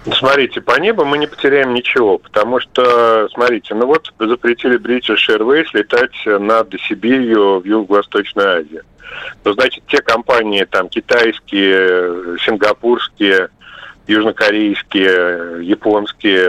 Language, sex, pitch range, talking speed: Russian, male, 105-145 Hz, 115 wpm